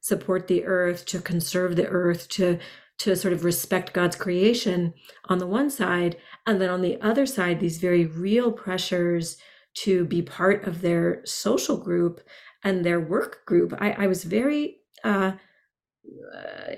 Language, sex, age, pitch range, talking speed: English, female, 40-59, 175-210 Hz, 155 wpm